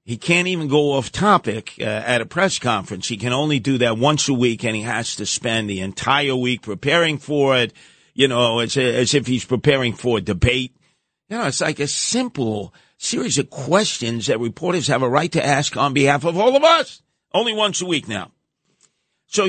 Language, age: English, 50-69